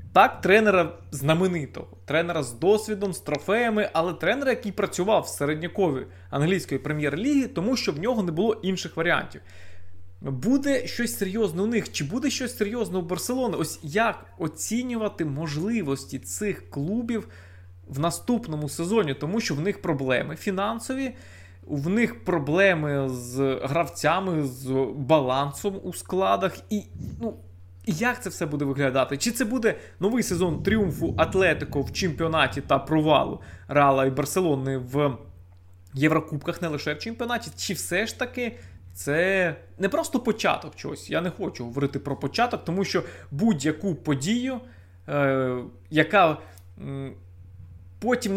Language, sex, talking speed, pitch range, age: Ukrainian, male, 140 wpm, 135-210 Hz, 20-39